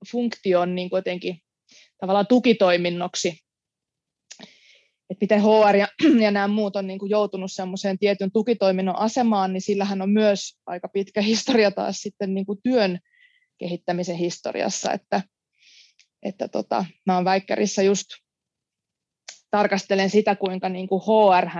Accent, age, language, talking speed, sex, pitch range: native, 20-39, Finnish, 125 wpm, female, 180-210 Hz